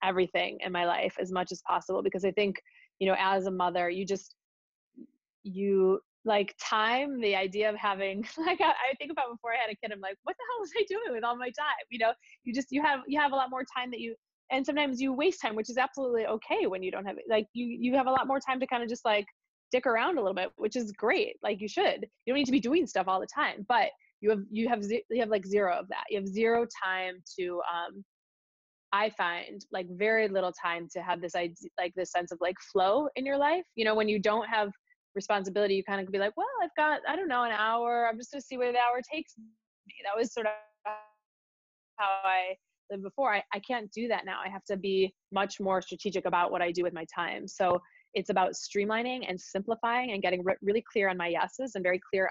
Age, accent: 20-39, American